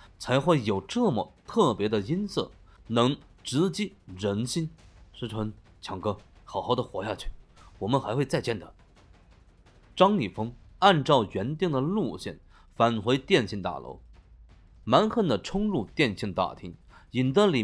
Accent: native